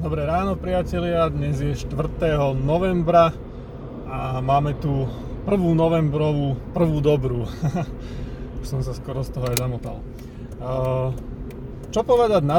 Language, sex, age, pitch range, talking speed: Slovak, male, 30-49, 130-160 Hz, 120 wpm